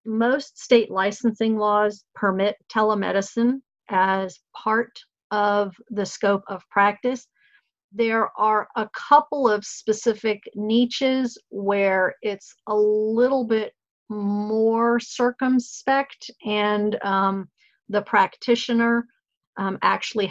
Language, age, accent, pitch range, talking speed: English, 50-69, American, 200-240 Hz, 100 wpm